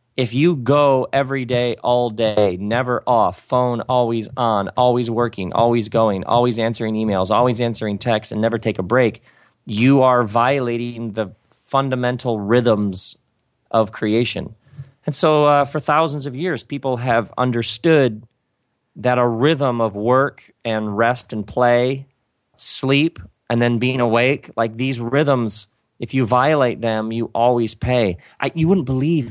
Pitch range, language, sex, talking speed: 110-130 Hz, English, male, 145 wpm